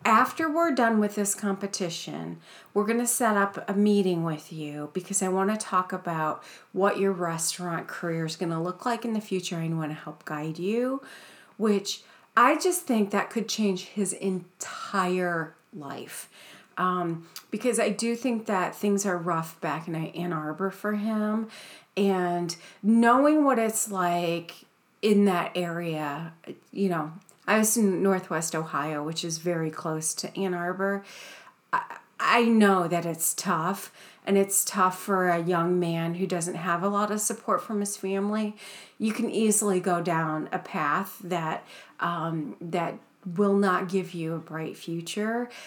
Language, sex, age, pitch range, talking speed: English, female, 30-49, 170-205 Hz, 165 wpm